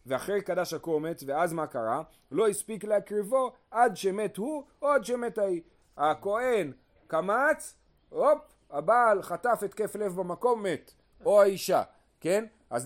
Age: 40-59